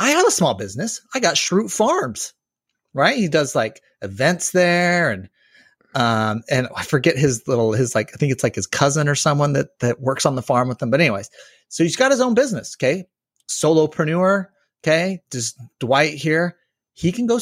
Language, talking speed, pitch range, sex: English, 195 wpm, 125-170 Hz, male